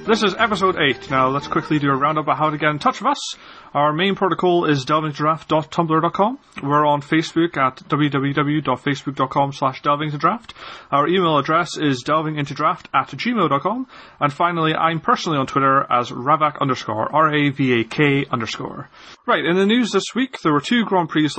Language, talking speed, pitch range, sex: English, 165 wpm, 130-165 Hz, male